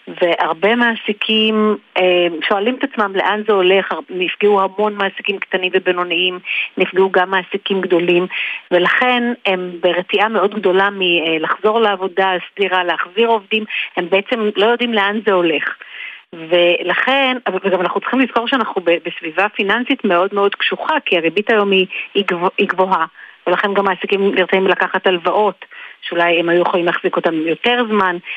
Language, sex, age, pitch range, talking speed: Hebrew, female, 40-59, 175-210 Hz, 135 wpm